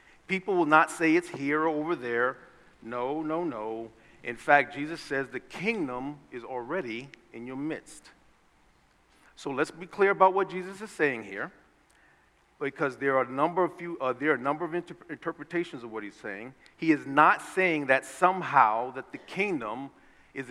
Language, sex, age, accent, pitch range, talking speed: English, male, 50-69, American, 130-175 Hz, 180 wpm